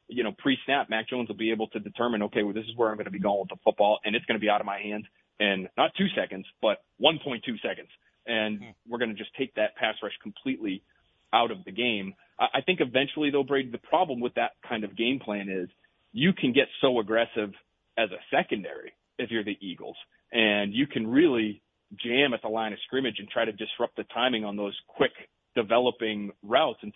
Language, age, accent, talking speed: English, 30-49, American, 225 wpm